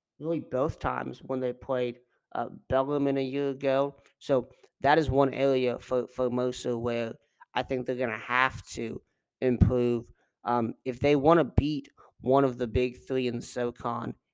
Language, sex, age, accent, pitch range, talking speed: English, male, 30-49, American, 120-140 Hz, 170 wpm